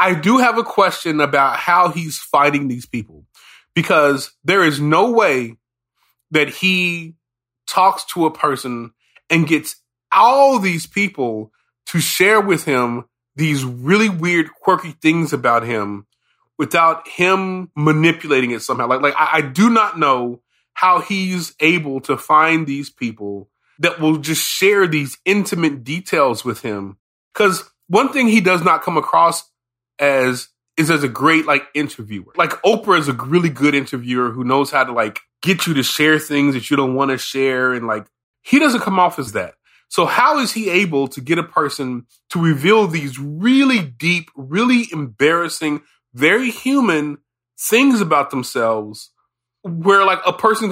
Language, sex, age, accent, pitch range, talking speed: English, male, 30-49, American, 130-180 Hz, 160 wpm